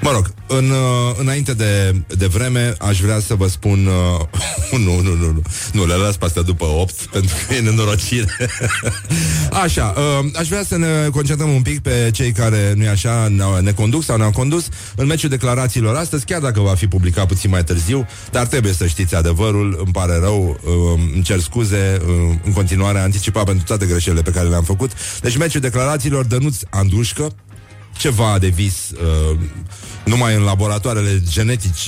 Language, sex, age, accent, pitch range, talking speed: Romanian, male, 30-49, native, 90-125 Hz, 180 wpm